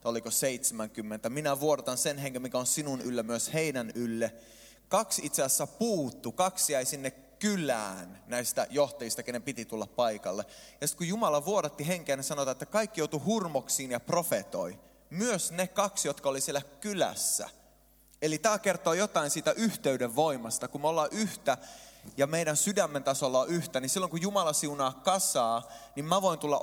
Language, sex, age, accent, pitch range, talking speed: Finnish, male, 20-39, native, 130-180 Hz, 170 wpm